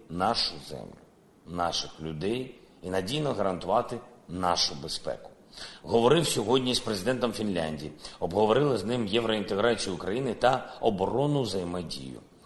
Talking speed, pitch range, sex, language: 105 wpm, 95-125 Hz, male, Ukrainian